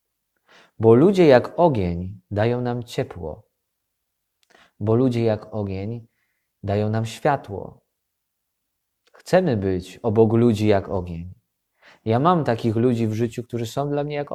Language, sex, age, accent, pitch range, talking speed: Polish, male, 20-39, native, 100-120 Hz, 130 wpm